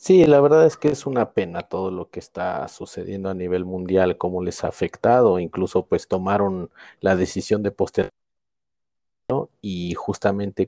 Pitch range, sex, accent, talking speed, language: 95-120 Hz, male, Mexican, 165 wpm, Spanish